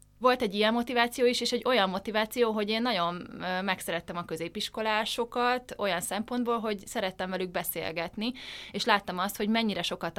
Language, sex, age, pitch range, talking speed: Hungarian, female, 20-39, 165-210 Hz, 160 wpm